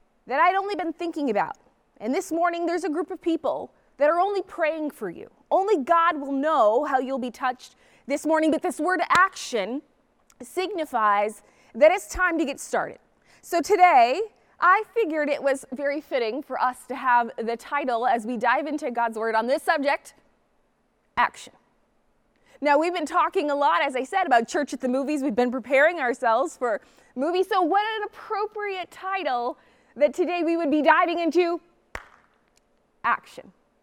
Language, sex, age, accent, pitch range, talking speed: English, female, 20-39, American, 265-350 Hz, 175 wpm